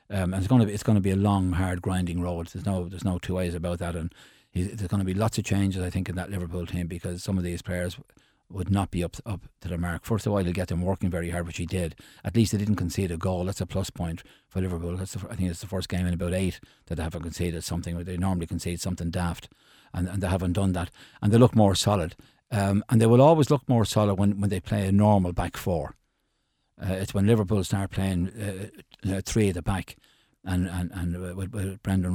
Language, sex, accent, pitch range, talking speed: English, male, Irish, 90-105 Hz, 260 wpm